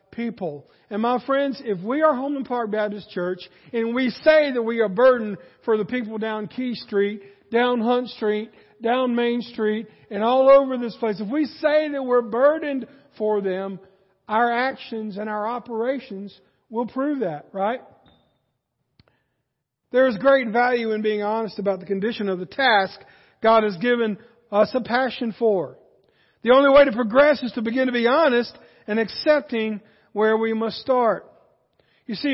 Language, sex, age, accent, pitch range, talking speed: English, male, 50-69, American, 200-255 Hz, 165 wpm